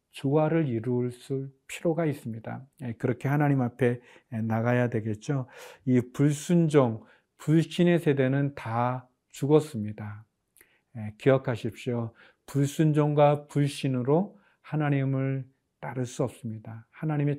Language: Korean